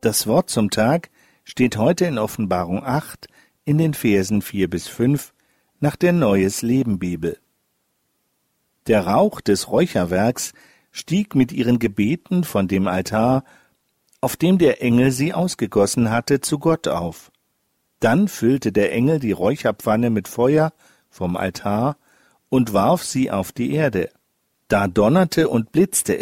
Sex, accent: male, German